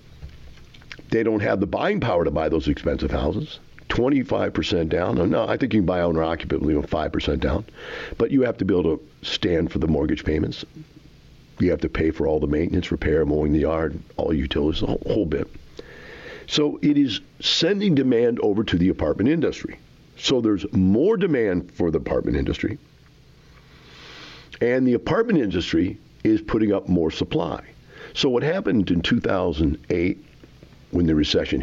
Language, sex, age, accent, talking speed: English, male, 50-69, American, 175 wpm